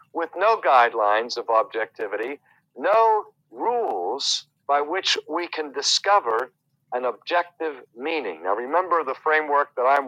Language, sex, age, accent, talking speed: English, male, 50-69, American, 125 wpm